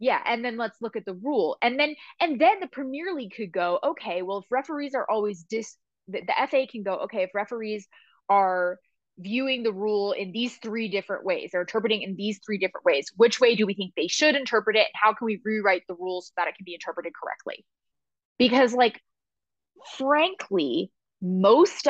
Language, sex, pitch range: English, female, 185-250 Hz